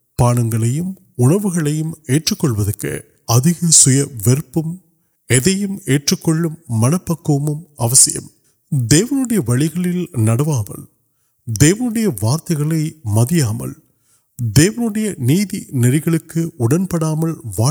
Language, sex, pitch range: Urdu, male, 125-170 Hz